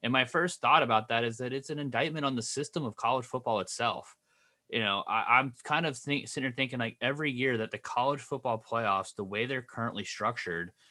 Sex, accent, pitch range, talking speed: male, American, 115-145 Hz, 225 wpm